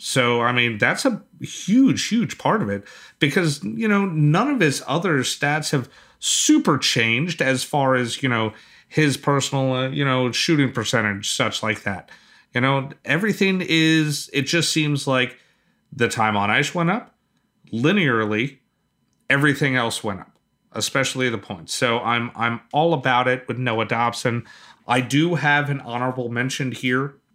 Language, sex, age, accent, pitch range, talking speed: English, male, 30-49, American, 115-150 Hz, 160 wpm